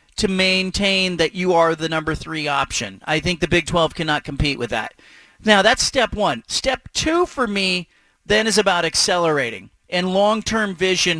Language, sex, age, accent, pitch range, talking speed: English, male, 40-59, American, 175-220 Hz, 175 wpm